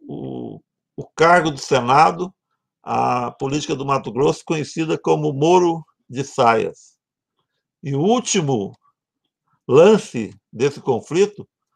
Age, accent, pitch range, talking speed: 60-79, Brazilian, 135-195 Hz, 105 wpm